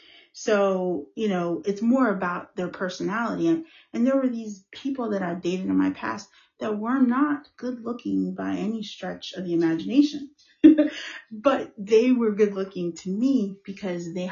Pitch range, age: 170-235 Hz, 30-49